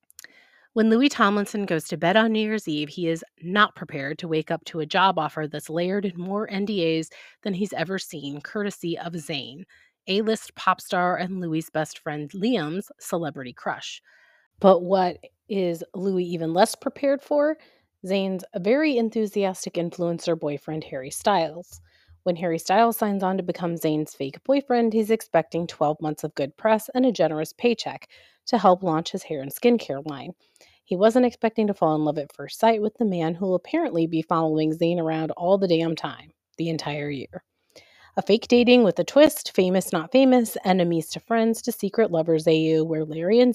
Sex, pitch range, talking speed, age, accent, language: female, 160-215 Hz, 185 wpm, 30-49, American, English